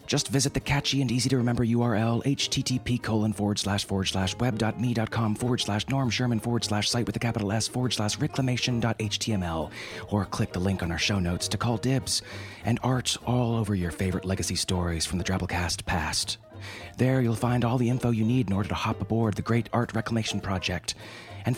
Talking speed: 195 wpm